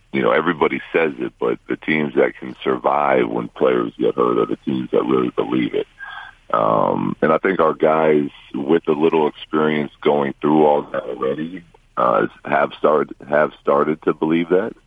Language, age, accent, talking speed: English, 40-59, American, 180 wpm